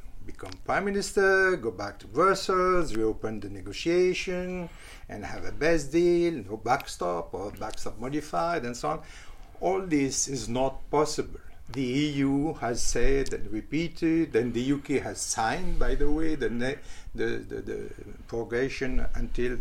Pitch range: 115-165 Hz